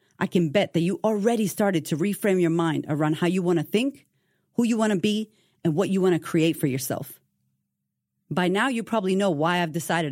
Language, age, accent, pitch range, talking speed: English, 40-59, American, 155-200 Hz, 225 wpm